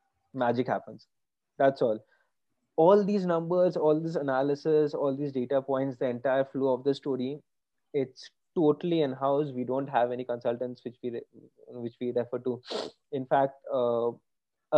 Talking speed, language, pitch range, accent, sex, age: 150 wpm, English, 125-155 Hz, Indian, male, 20-39